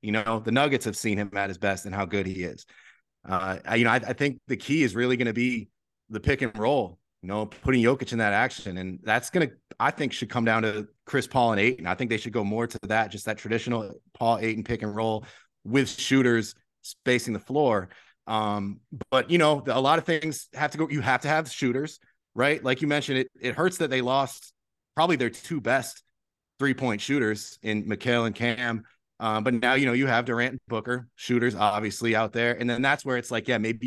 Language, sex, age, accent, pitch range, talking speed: English, male, 30-49, American, 105-130 Hz, 235 wpm